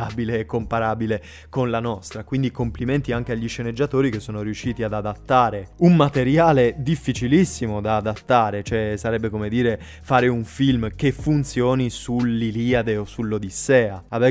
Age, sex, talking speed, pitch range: 20-39, male, 140 wpm, 110-135 Hz